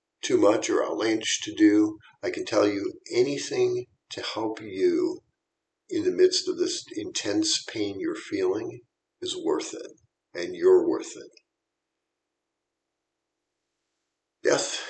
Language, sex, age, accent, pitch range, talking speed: English, male, 50-69, American, 360-405 Hz, 125 wpm